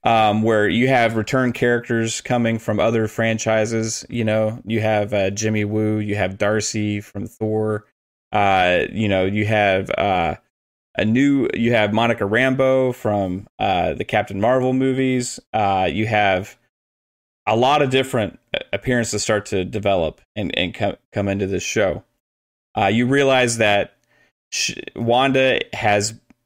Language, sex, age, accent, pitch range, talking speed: English, male, 30-49, American, 105-120 Hz, 145 wpm